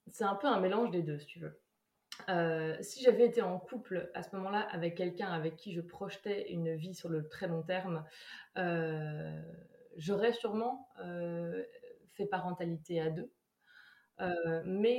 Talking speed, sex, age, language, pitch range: 170 wpm, female, 20-39, French, 165-200 Hz